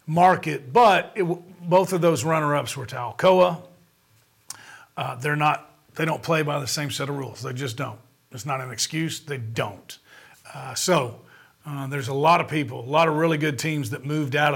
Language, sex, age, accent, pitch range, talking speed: English, male, 40-59, American, 130-155 Hz, 195 wpm